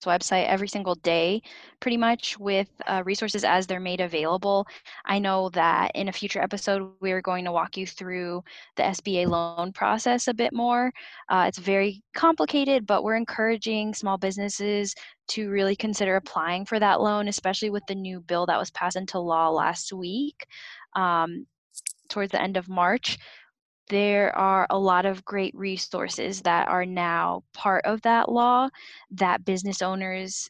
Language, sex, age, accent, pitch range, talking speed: English, female, 10-29, American, 180-215 Hz, 165 wpm